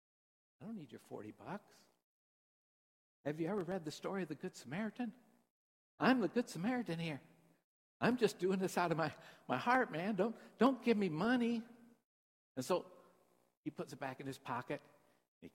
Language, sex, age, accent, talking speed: English, male, 60-79, American, 180 wpm